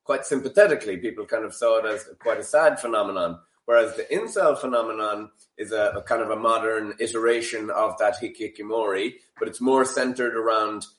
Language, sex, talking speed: English, male, 175 wpm